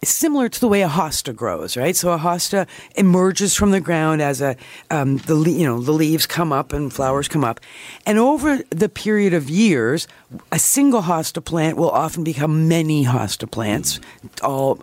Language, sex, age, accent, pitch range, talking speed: English, female, 50-69, American, 145-205 Hz, 185 wpm